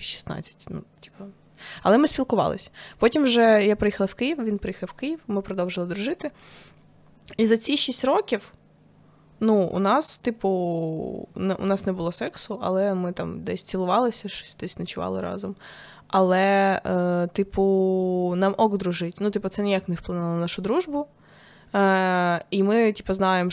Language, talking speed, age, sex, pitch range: Ukrainian, 160 wpm, 20-39, female, 175-210 Hz